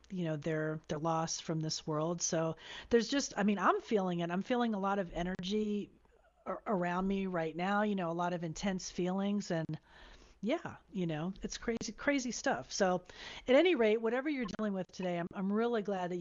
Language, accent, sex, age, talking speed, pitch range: English, American, female, 40-59, 205 wpm, 165-210 Hz